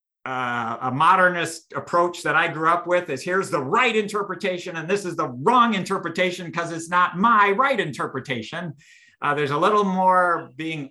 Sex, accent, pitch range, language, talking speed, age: male, American, 150-180 Hz, English, 175 wpm, 50-69